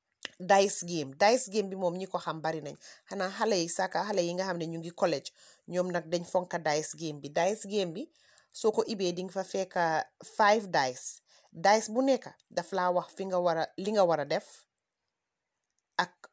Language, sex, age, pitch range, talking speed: English, female, 30-49, 175-215 Hz, 150 wpm